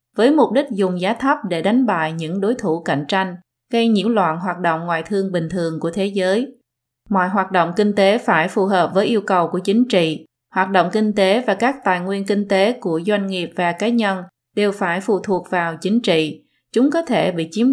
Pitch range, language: 180-220 Hz, Vietnamese